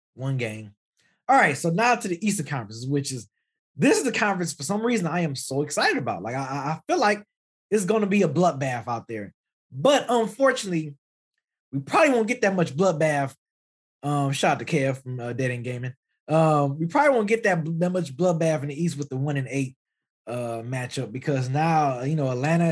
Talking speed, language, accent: 210 wpm, English, American